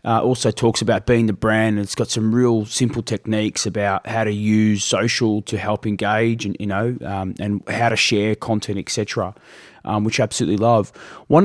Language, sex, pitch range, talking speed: English, male, 105-130 Hz, 200 wpm